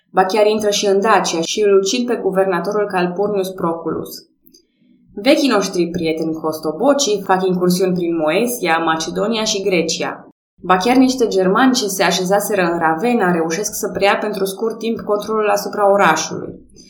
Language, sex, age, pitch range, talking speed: Romanian, female, 20-39, 180-220 Hz, 145 wpm